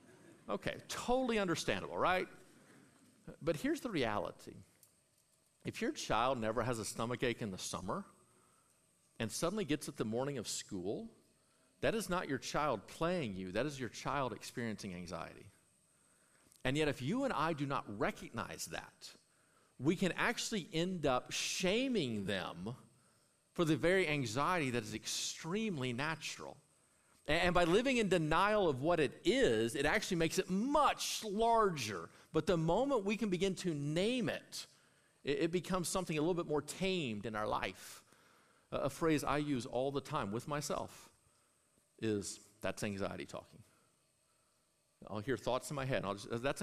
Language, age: English, 50-69